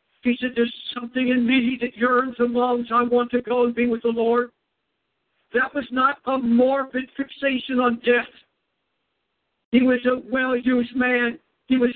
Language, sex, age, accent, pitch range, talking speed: English, male, 60-79, American, 240-265 Hz, 180 wpm